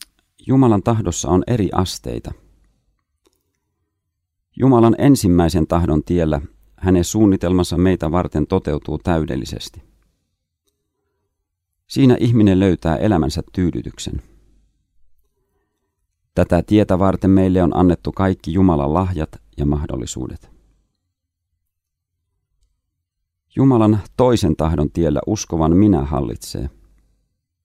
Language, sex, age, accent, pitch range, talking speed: Finnish, male, 40-59, native, 80-95 Hz, 80 wpm